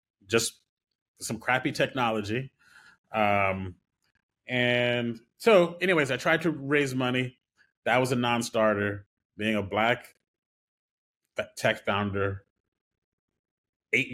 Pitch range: 105-130 Hz